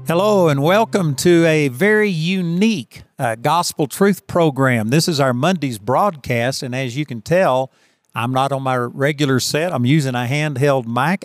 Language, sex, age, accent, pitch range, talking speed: English, male, 50-69, American, 125-160 Hz, 170 wpm